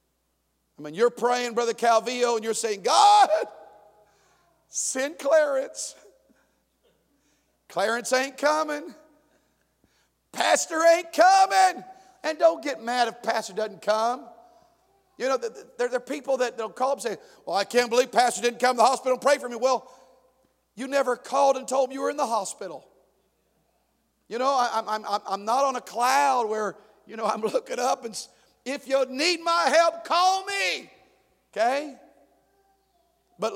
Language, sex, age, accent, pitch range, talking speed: English, male, 50-69, American, 175-275 Hz, 150 wpm